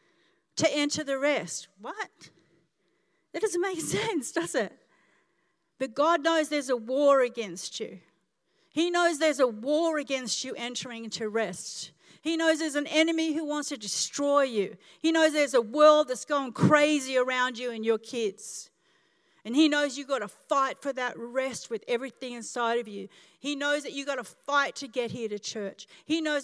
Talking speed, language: 185 wpm, English